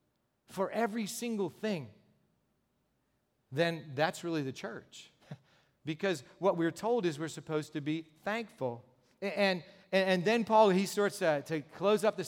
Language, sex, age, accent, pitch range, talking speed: English, male, 40-59, American, 155-205 Hz, 150 wpm